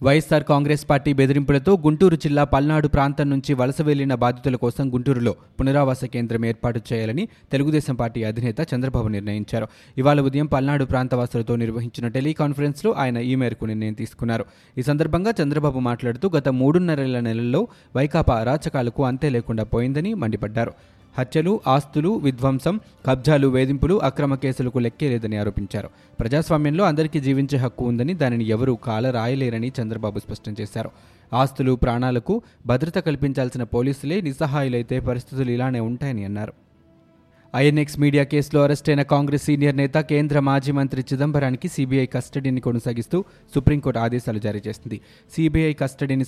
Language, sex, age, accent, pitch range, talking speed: Telugu, male, 20-39, native, 120-145 Hz, 130 wpm